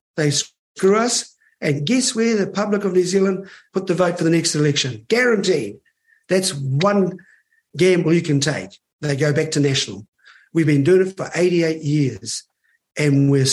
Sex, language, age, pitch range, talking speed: male, English, 50-69, 150-195 Hz, 175 wpm